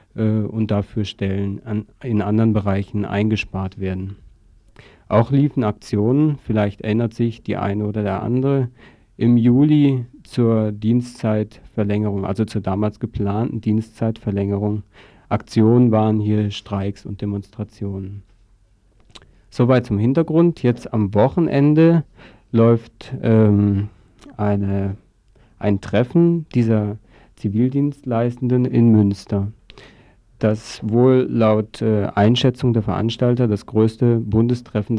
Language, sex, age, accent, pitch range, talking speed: German, male, 50-69, German, 105-120 Hz, 100 wpm